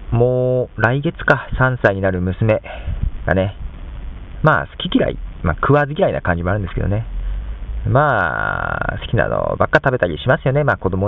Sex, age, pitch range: male, 40-59, 75-120 Hz